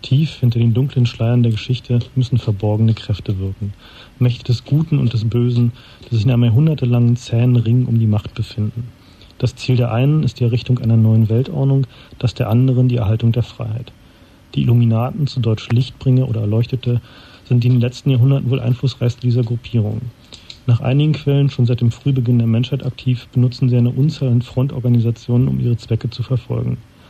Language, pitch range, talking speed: German, 115-130 Hz, 180 wpm